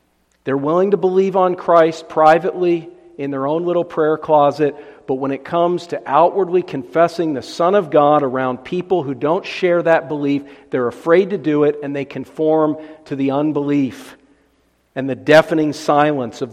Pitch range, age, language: 140-170 Hz, 50-69, English